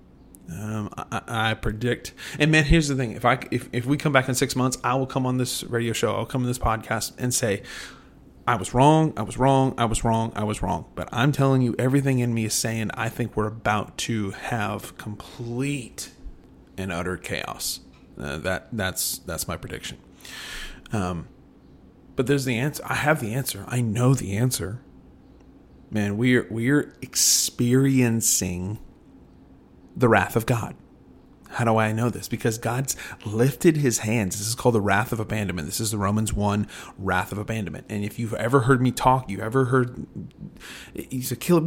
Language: English